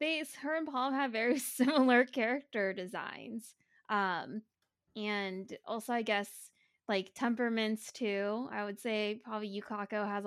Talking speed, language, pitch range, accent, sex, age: 130 wpm, English, 200-250 Hz, American, female, 10-29